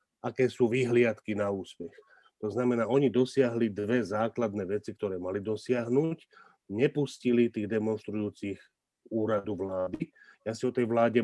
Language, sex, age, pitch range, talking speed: Slovak, male, 40-59, 110-125 Hz, 135 wpm